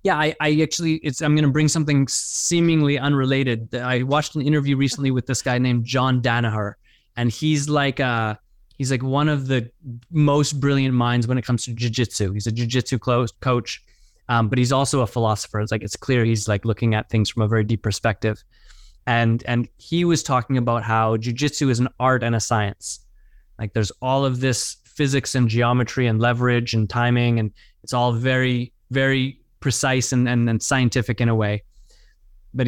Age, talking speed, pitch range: 20-39, 185 wpm, 115-135 Hz